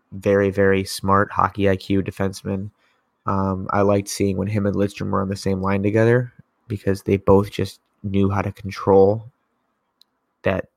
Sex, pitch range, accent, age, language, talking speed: male, 95-105 Hz, American, 20-39, English, 160 wpm